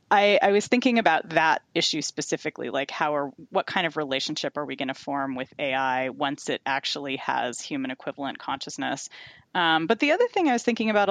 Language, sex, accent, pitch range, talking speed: English, female, American, 150-190 Hz, 205 wpm